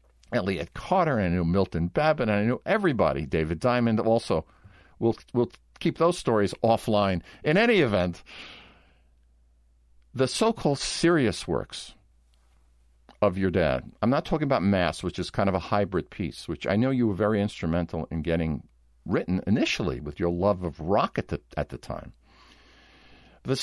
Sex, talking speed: male, 165 wpm